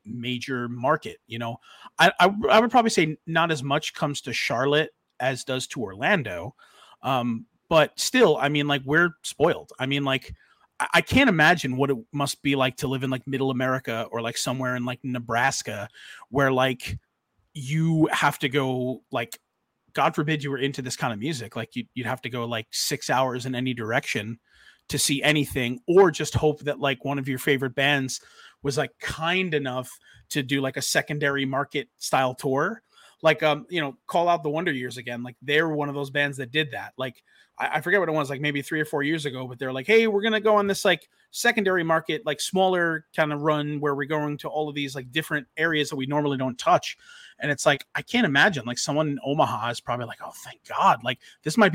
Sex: male